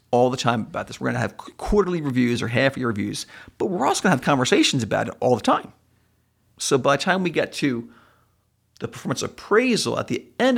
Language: English